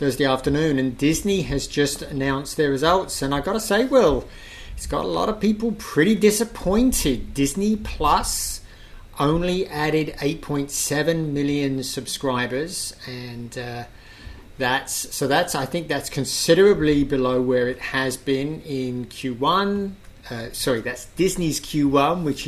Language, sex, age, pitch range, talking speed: English, male, 30-49, 130-170 Hz, 135 wpm